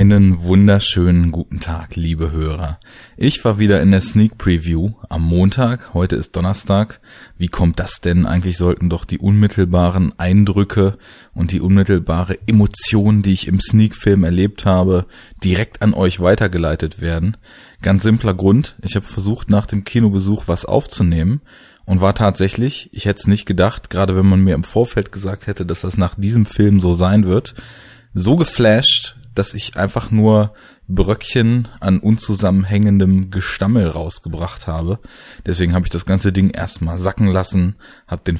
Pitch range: 90-110 Hz